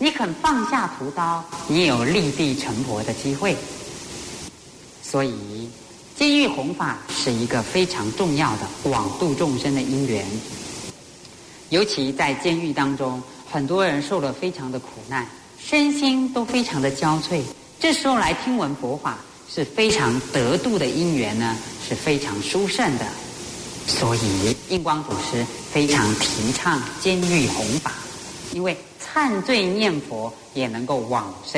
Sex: female